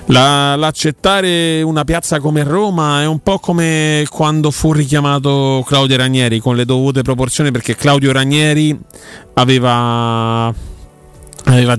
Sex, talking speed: male, 115 wpm